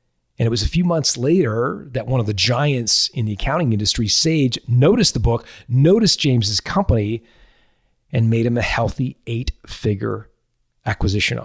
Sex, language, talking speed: male, English, 155 wpm